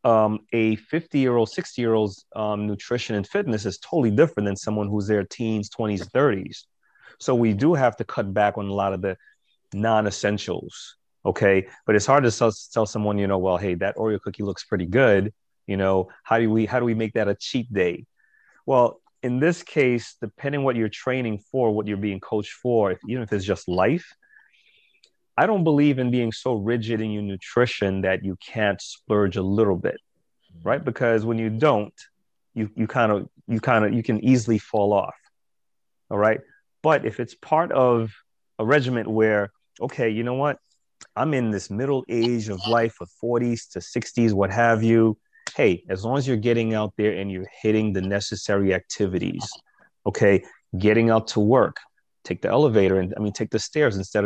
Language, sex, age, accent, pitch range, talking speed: English, male, 30-49, American, 100-120 Hz, 185 wpm